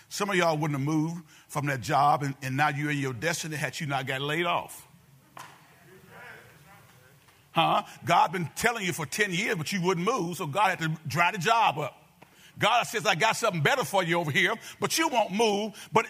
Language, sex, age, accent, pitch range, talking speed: English, male, 50-69, American, 155-205 Hz, 215 wpm